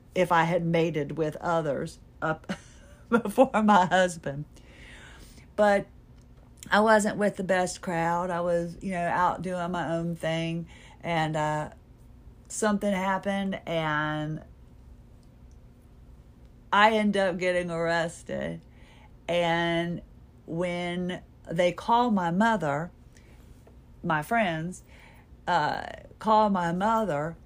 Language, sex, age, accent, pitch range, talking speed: English, female, 50-69, American, 165-205 Hz, 105 wpm